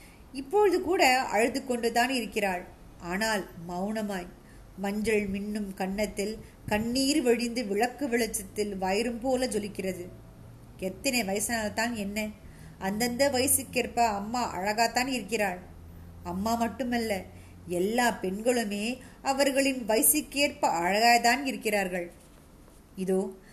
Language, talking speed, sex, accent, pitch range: Tamil, 85 wpm, female, native, 200-255 Hz